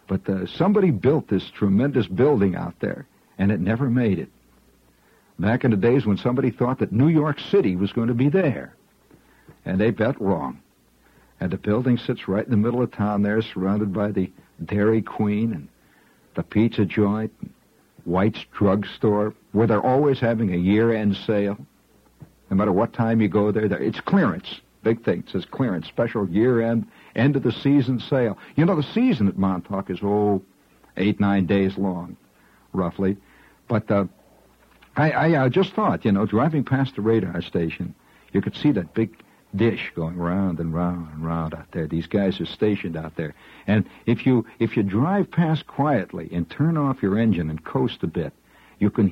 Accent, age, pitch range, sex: American, 60-79, 95-125 Hz, male